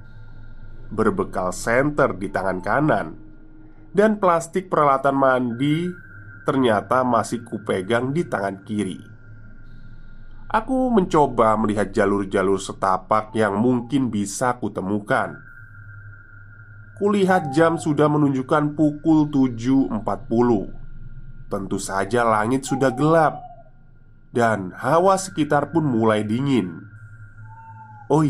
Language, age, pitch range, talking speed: Indonesian, 20-39, 105-135 Hz, 90 wpm